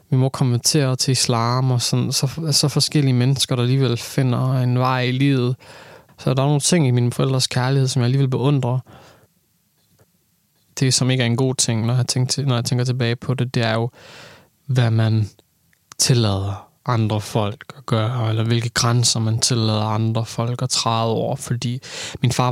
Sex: male